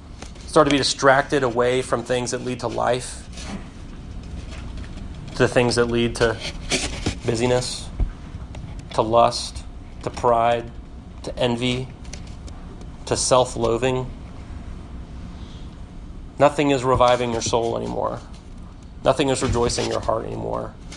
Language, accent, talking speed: English, American, 105 wpm